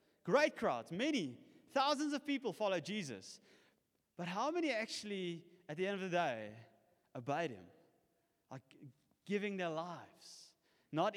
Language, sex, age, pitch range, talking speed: English, male, 20-39, 165-230 Hz, 135 wpm